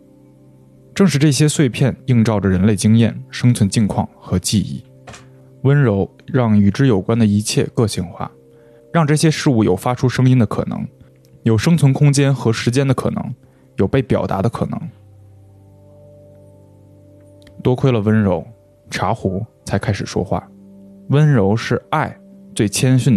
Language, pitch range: Chinese, 100-130 Hz